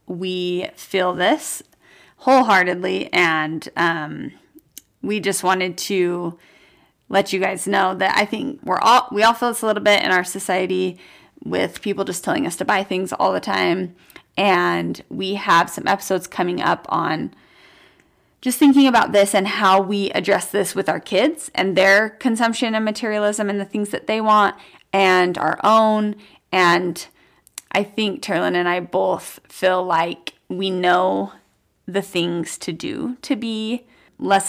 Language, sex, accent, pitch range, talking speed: English, female, American, 180-215 Hz, 160 wpm